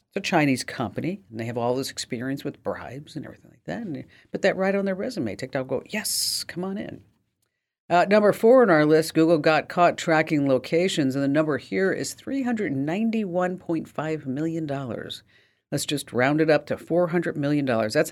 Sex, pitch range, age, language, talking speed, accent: female, 130-170 Hz, 50-69, English, 190 wpm, American